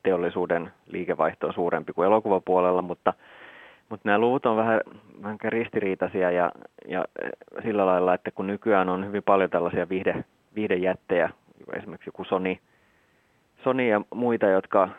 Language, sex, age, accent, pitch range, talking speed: Finnish, male, 30-49, native, 95-105 Hz, 135 wpm